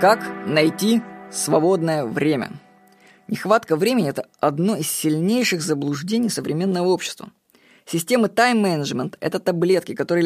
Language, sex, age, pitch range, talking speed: Russian, female, 20-39, 165-210 Hz, 105 wpm